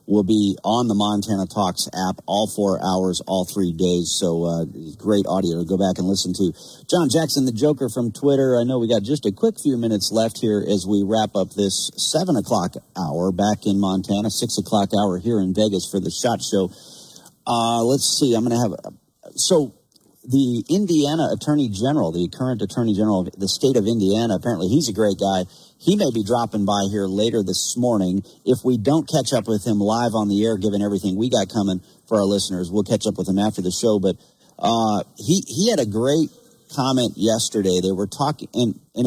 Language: English